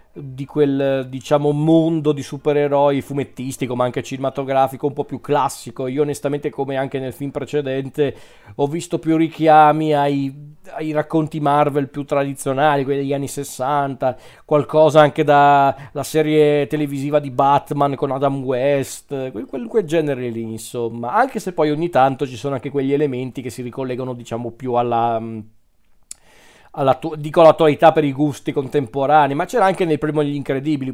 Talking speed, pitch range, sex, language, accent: 150 wpm, 130-150 Hz, male, Italian, native